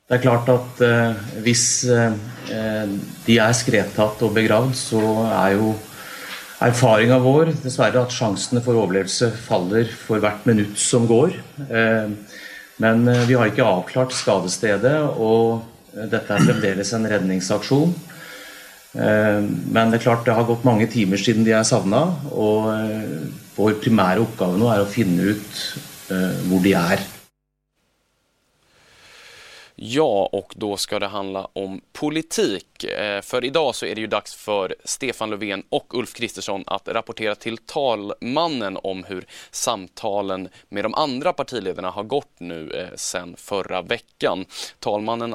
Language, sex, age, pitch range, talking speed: Swedish, male, 30-49, 100-120 Hz, 145 wpm